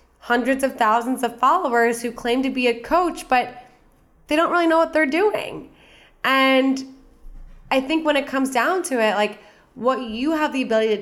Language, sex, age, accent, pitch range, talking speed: English, female, 20-39, American, 200-255 Hz, 190 wpm